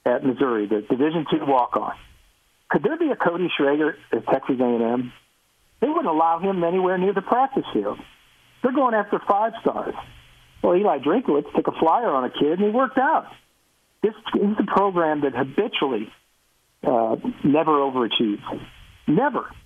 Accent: American